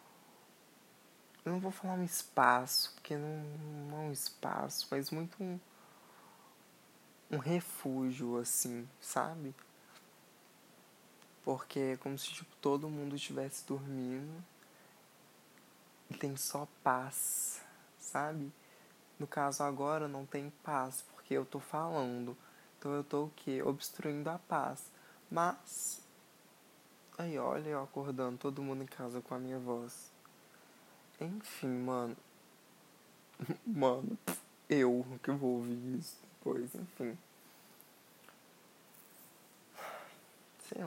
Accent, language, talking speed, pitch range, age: Brazilian, Portuguese, 110 wpm, 130-155 Hz, 20-39